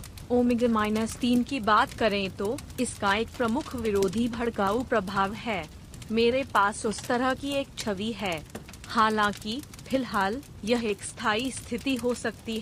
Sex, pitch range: female, 210-250 Hz